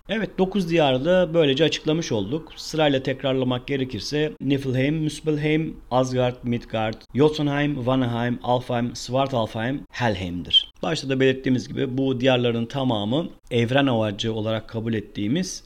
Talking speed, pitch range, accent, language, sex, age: 115 wpm, 105-135 Hz, native, Turkish, male, 40-59